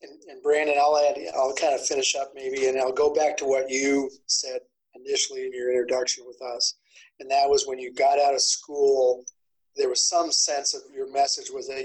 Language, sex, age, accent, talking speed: English, male, 30-49, American, 215 wpm